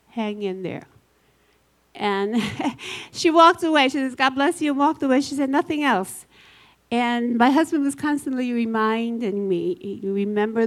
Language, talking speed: English, 155 wpm